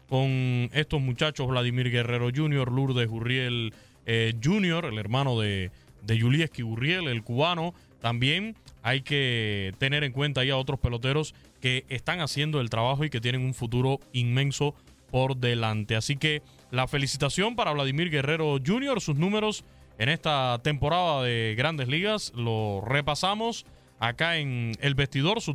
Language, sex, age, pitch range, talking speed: Spanish, male, 20-39, 125-155 Hz, 145 wpm